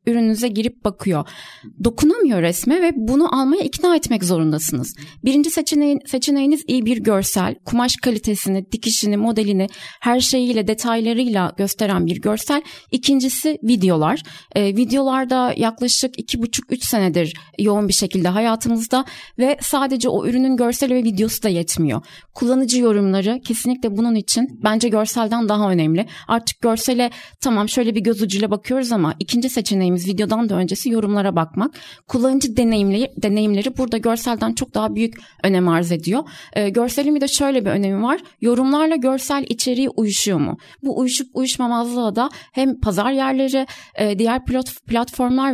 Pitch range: 210-260 Hz